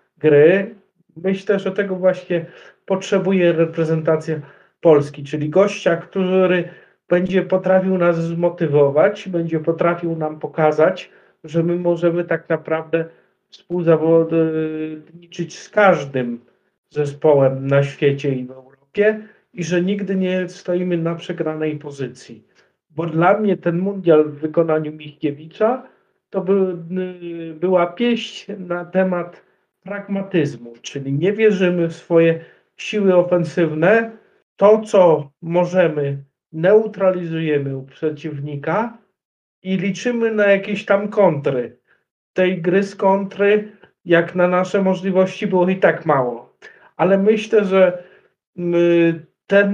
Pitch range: 160-190 Hz